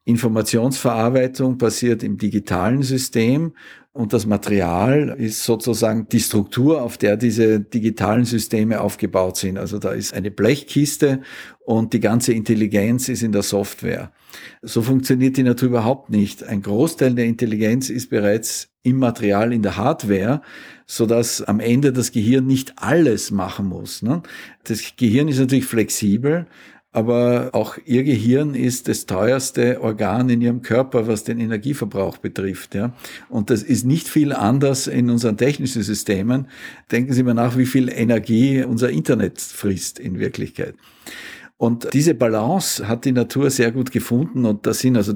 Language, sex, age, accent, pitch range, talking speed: German, male, 50-69, Austrian, 105-125 Hz, 150 wpm